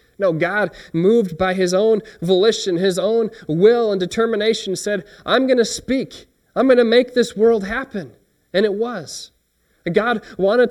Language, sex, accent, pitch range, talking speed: English, male, American, 160-205 Hz, 160 wpm